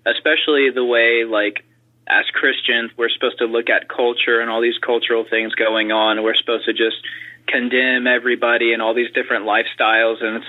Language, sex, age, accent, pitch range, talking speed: English, male, 20-39, American, 115-130 Hz, 185 wpm